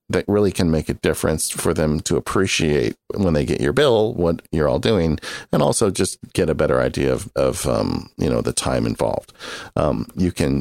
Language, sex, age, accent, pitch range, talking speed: English, male, 50-69, American, 75-95 Hz, 210 wpm